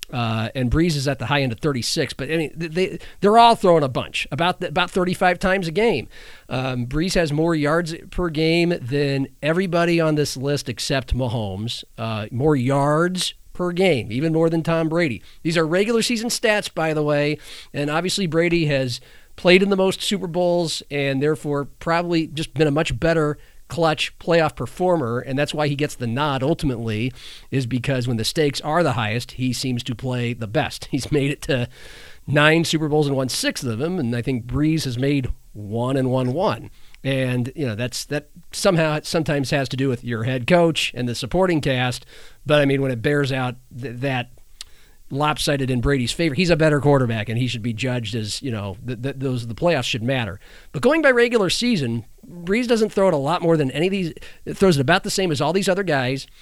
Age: 40-59